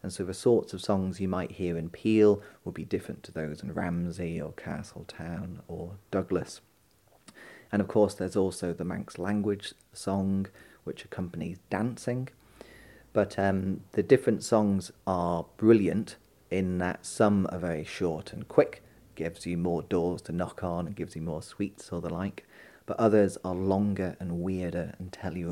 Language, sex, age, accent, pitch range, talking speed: English, male, 30-49, British, 90-105 Hz, 170 wpm